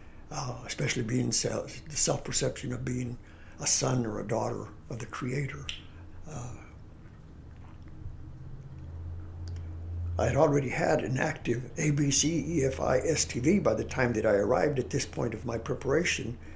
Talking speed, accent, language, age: 140 wpm, American, English, 60-79